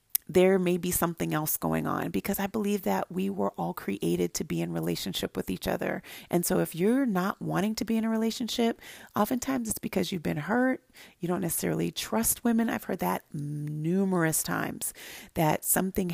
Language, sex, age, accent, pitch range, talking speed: English, female, 30-49, American, 165-210 Hz, 190 wpm